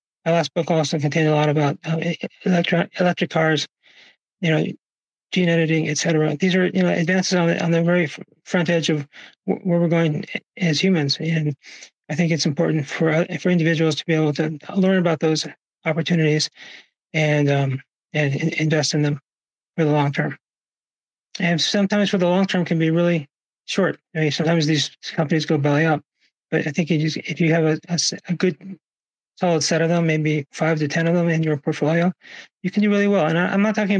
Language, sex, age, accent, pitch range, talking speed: English, male, 30-49, American, 155-170 Hz, 200 wpm